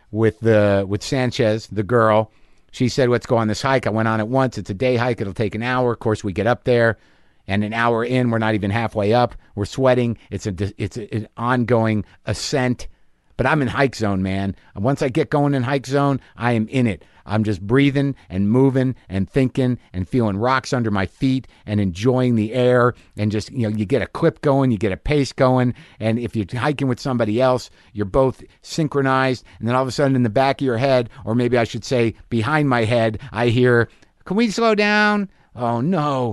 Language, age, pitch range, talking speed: English, 50-69, 110-145 Hz, 225 wpm